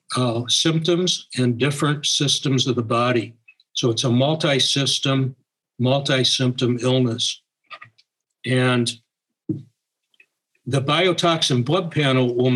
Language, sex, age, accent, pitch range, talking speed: English, male, 60-79, American, 120-140 Hz, 95 wpm